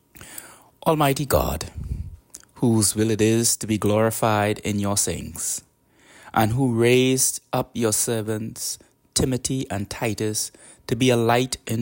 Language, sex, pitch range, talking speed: English, male, 95-120 Hz, 130 wpm